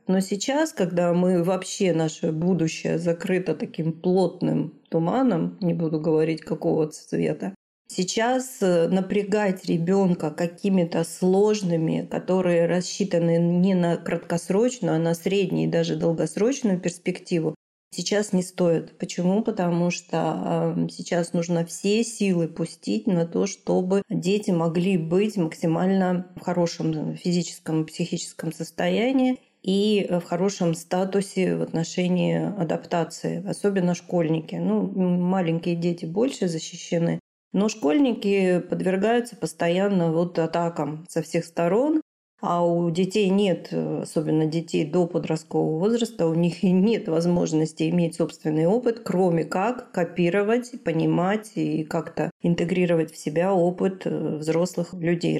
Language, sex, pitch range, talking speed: Russian, female, 165-195 Hz, 120 wpm